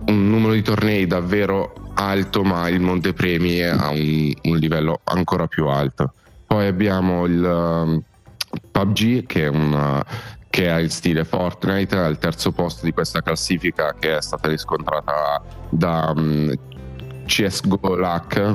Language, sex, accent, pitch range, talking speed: Italian, male, native, 80-95 Hz, 145 wpm